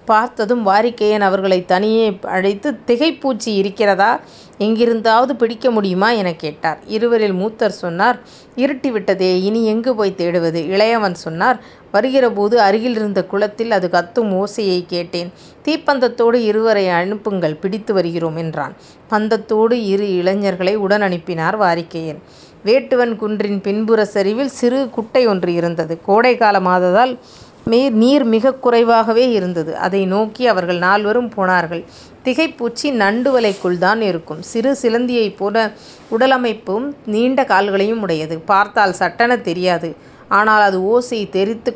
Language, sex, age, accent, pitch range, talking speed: Tamil, female, 30-49, native, 185-235 Hz, 120 wpm